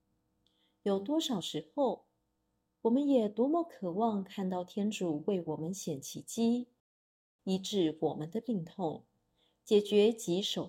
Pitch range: 165-225 Hz